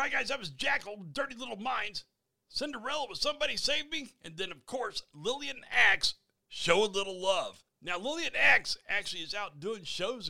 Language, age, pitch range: English, 40-59, 125-175 Hz